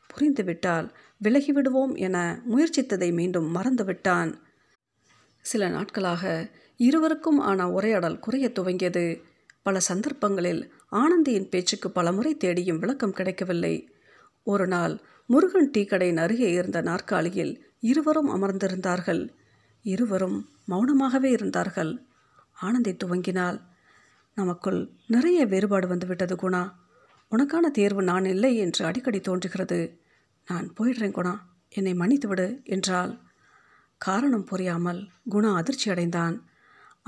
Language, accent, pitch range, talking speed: Tamil, native, 180-240 Hz, 90 wpm